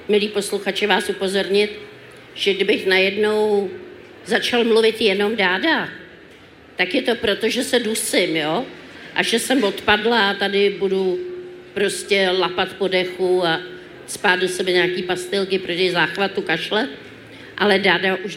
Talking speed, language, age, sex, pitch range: 135 wpm, Czech, 50-69, female, 185-245 Hz